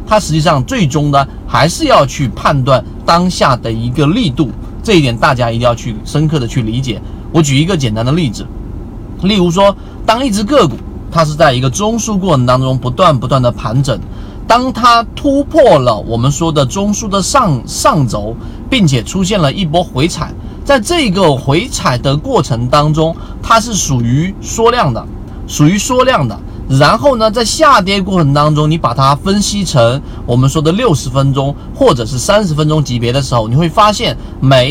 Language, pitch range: Chinese, 130-185 Hz